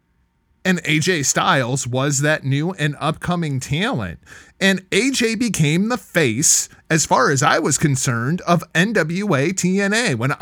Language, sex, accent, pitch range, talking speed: English, male, American, 145-200 Hz, 140 wpm